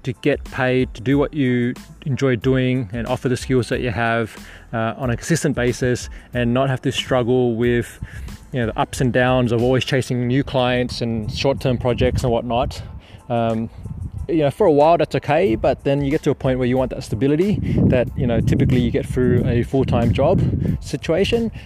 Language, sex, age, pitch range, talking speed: English, male, 20-39, 115-130 Hz, 205 wpm